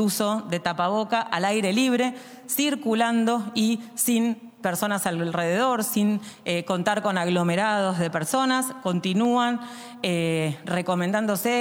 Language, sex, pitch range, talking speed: Spanish, female, 175-225 Hz, 110 wpm